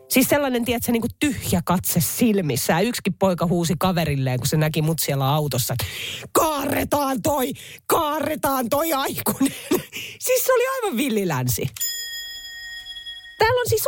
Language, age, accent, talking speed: Finnish, 30-49, native, 145 wpm